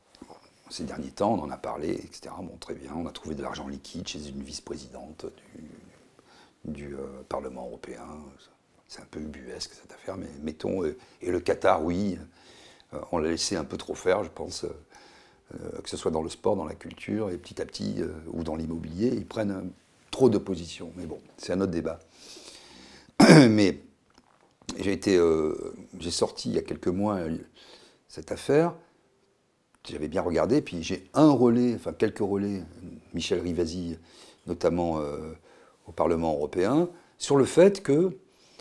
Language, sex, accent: French, male, French